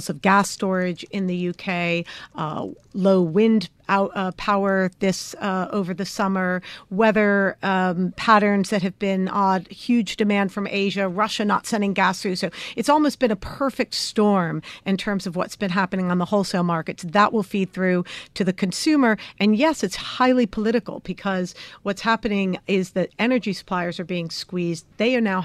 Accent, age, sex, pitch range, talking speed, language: American, 50-69, female, 185-215 Hz, 175 wpm, English